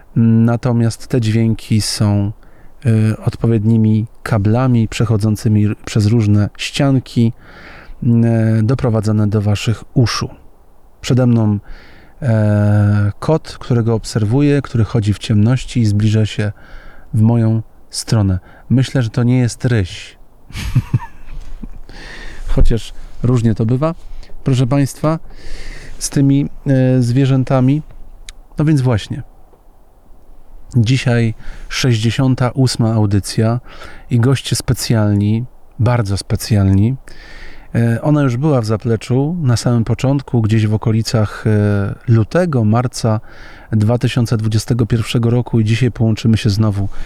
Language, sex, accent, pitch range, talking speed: Polish, male, native, 105-125 Hz, 95 wpm